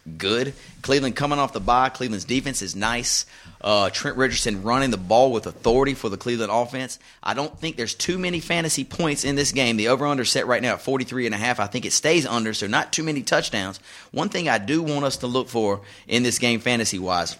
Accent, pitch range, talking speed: American, 120-150 Hz, 215 wpm